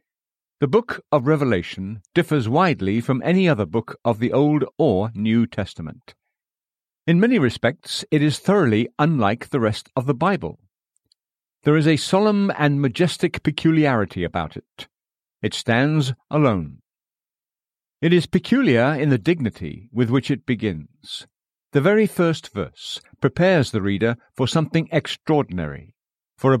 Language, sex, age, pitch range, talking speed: English, male, 50-69, 115-150 Hz, 140 wpm